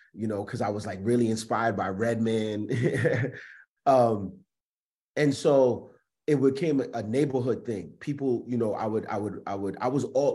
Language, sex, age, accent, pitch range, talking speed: English, male, 30-49, American, 110-125 Hz, 175 wpm